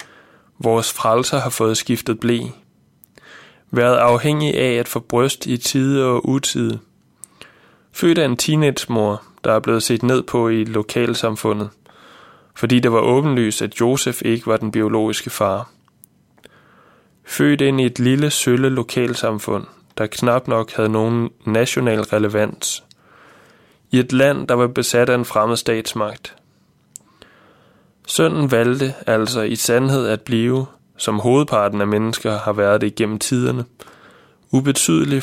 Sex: male